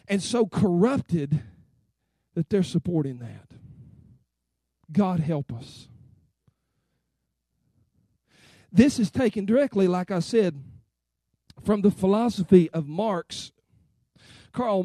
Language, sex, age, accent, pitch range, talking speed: English, male, 40-59, American, 175-230 Hz, 95 wpm